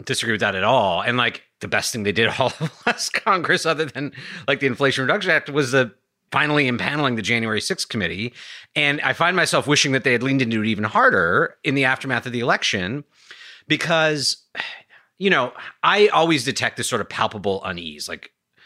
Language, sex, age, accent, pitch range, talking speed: English, male, 30-49, American, 100-140 Hz, 200 wpm